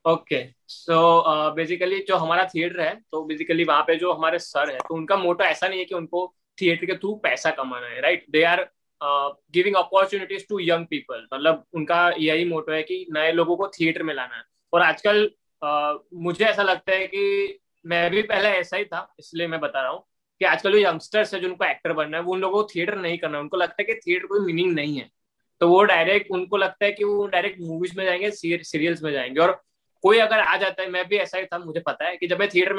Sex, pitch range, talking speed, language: male, 165-205 Hz, 235 wpm, Hindi